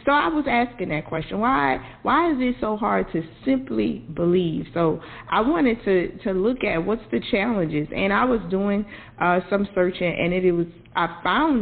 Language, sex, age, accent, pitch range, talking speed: English, female, 40-59, American, 160-195 Hz, 195 wpm